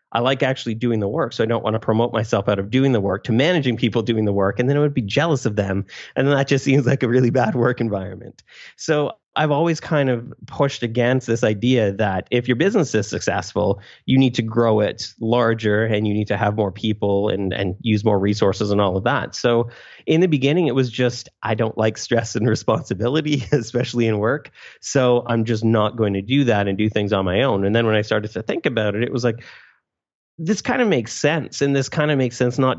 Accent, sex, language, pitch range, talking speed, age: American, male, English, 105-130 Hz, 245 wpm, 30-49